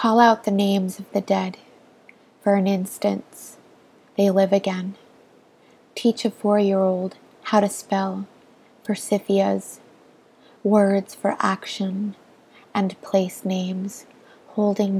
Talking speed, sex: 110 wpm, female